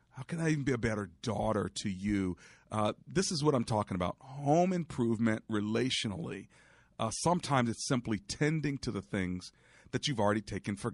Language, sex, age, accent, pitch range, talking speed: English, male, 40-59, American, 95-120 Hz, 180 wpm